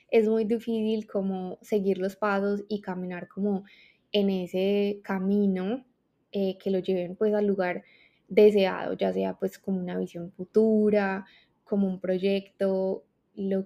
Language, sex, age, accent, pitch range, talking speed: Spanish, female, 20-39, Colombian, 185-210 Hz, 140 wpm